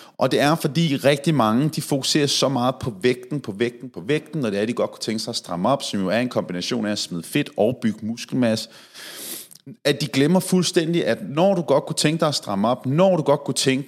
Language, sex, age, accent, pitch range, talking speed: Danish, male, 30-49, native, 110-155 Hz, 255 wpm